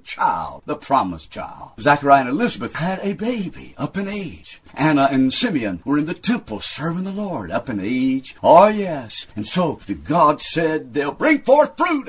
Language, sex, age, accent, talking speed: English, male, 50-69, American, 185 wpm